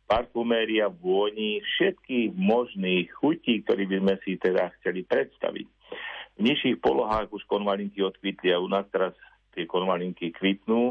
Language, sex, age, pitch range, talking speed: Slovak, male, 50-69, 95-120 Hz, 140 wpm